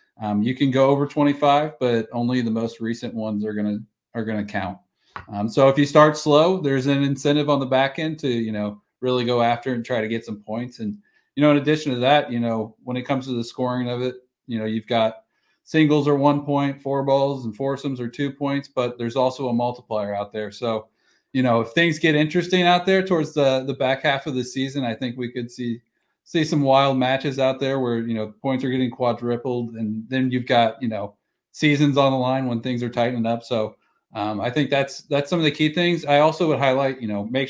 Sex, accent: male, American